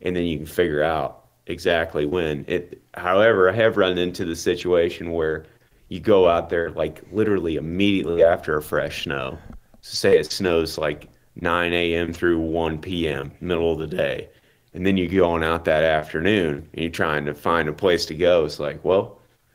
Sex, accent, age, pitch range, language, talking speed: male, American, 30-49, 80-95 Hz, English, 185 wpm